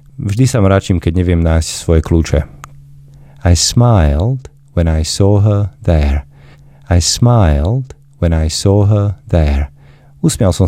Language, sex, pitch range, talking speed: Slovak, male, 85-125 Hz, 135 wpm